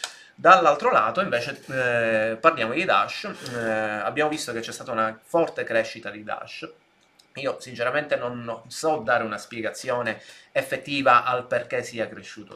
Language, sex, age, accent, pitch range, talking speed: Italian, male, 30-49, native, 110-125 Hz, 145 wpm